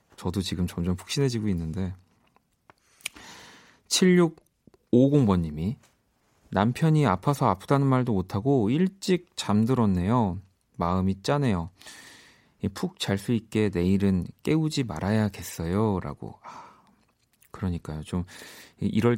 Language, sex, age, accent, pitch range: Korean, male, 40-59, native, 95-125 Hz